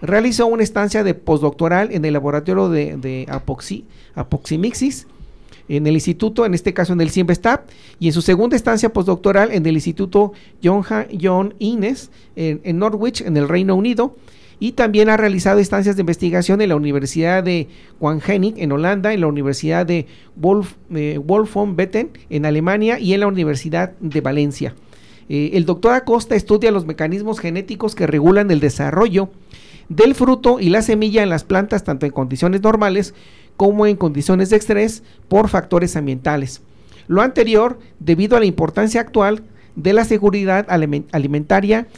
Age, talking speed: 40-59, 165 wpm